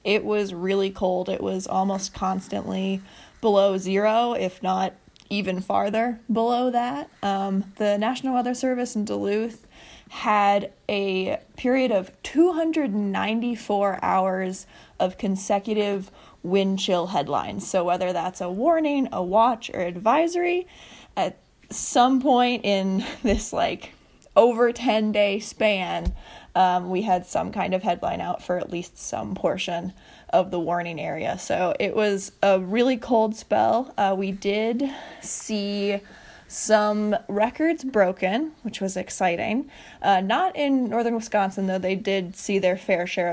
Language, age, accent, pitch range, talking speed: English, 20-39, American, 190-230 Hz, 135 wpm